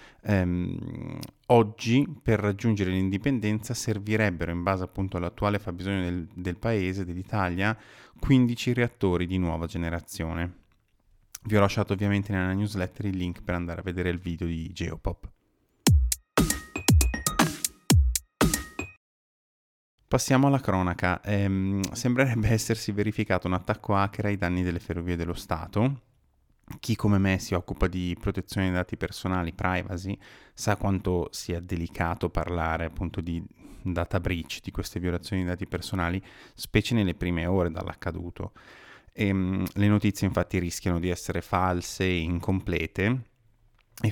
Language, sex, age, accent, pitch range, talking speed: Italian, male, 30-49, native, 90-105 Hz, 125 wpm